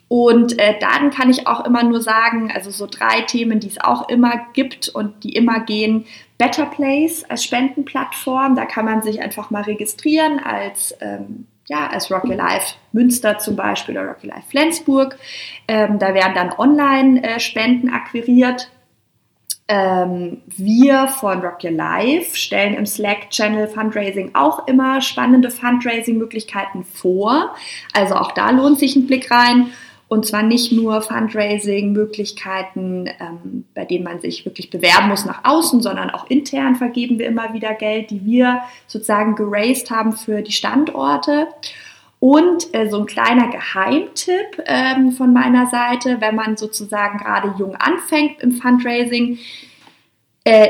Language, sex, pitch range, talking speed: German, female, 210-260 Hz, 150 wpm